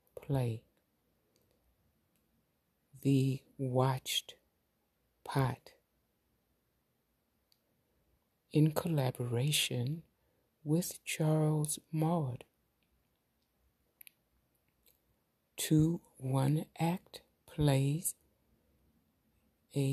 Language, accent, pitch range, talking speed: English, American, 130-155 Hz, 40 wpm